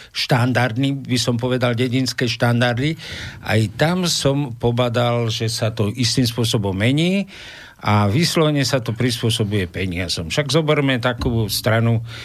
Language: Slovak